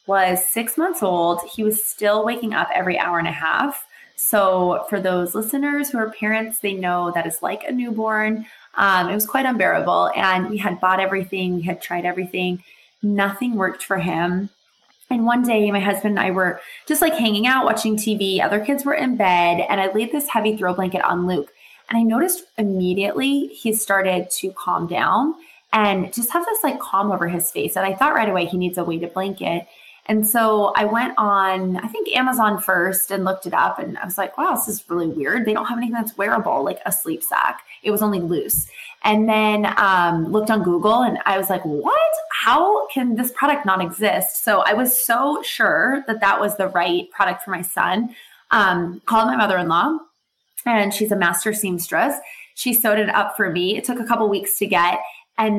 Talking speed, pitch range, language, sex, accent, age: 210 wpm, 185-235 Hz, English, female, American, 20-39